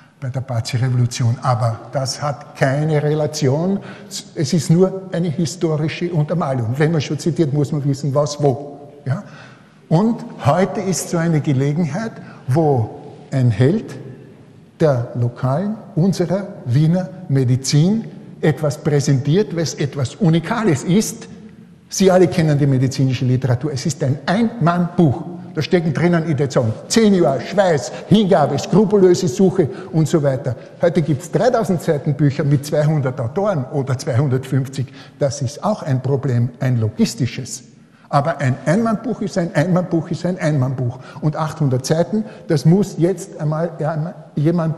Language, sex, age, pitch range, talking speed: German, male, 50-69, 140-180 Hz, 135 wpm